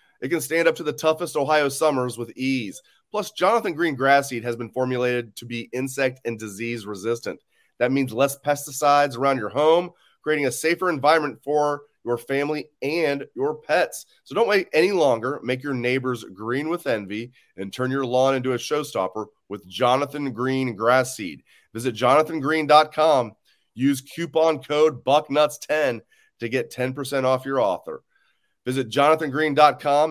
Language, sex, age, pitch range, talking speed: English, male, 30-49, 115-150 Hz, 155 wpm